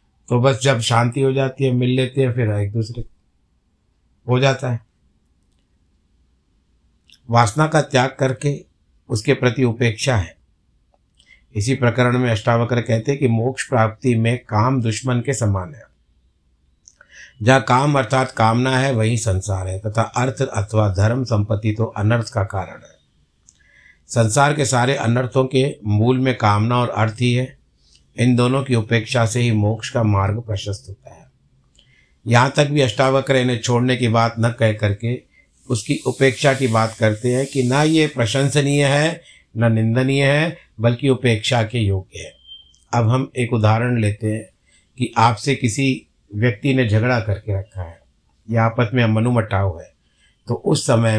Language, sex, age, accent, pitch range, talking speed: Hindi, male, 60-79, native, 105-130 Hz, 155 wpm